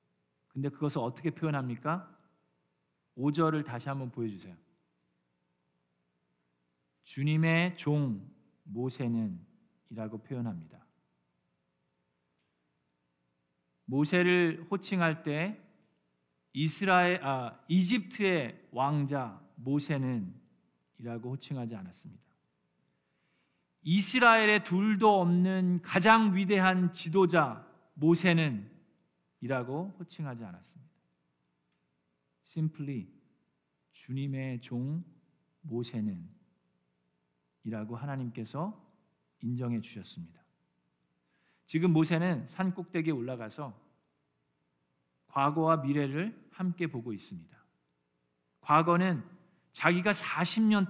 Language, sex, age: Korean, male, 40-59